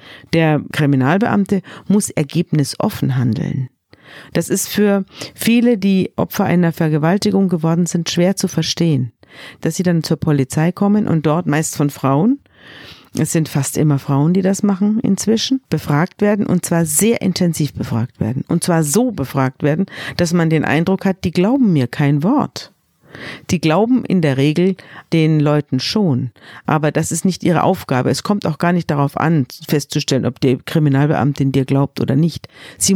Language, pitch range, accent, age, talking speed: German, 145-195 Hz, German, 50-69, 165 wpm